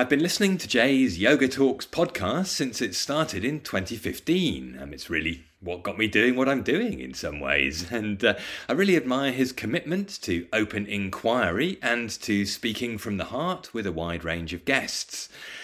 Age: 30-49